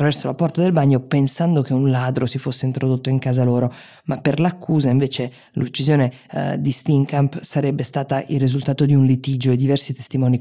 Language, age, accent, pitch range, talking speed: Italian, 20-39, native, 130-150 Hz, 185 wpm